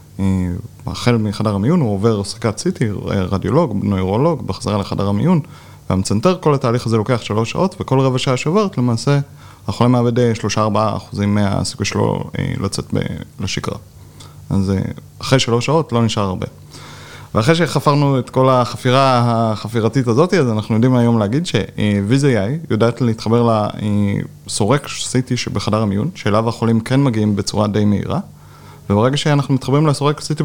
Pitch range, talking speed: 110-145 Hz, 150 wpm